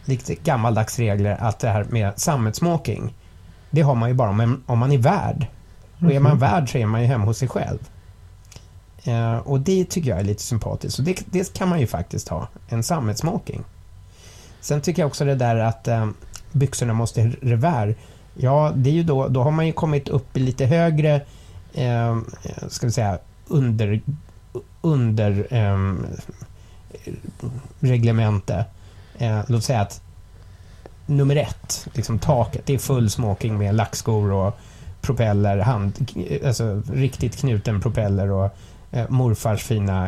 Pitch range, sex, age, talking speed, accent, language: 100-130 Hz, male, 30-49, 155 wpm, Swedish, English